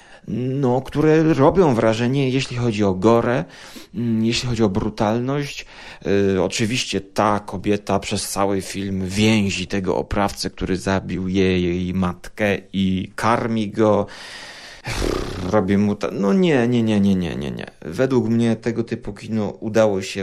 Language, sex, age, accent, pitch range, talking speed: Polish, male, 30-49, native, 100-125 Hz, 145 wpm